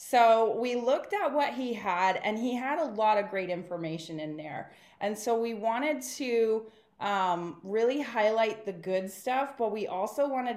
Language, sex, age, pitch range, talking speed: English, female, 20-39, 185-230 Hz, 180 wpm